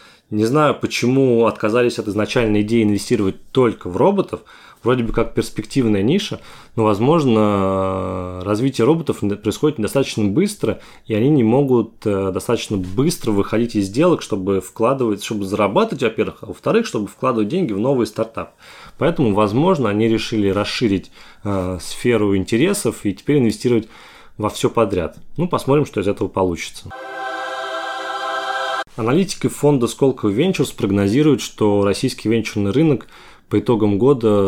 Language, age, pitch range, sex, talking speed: Russian, 20-39, 105-130 Hz, male, 130 wpm